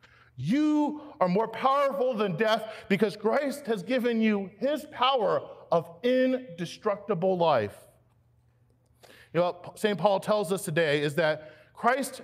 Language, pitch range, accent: English, 180-245 Hz, American